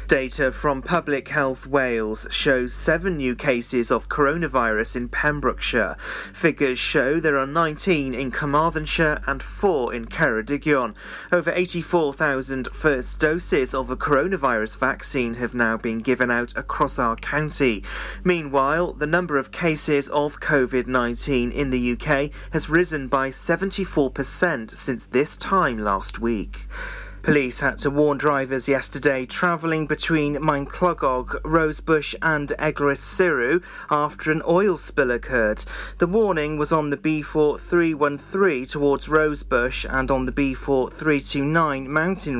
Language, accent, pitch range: English, British, 130-155 Hz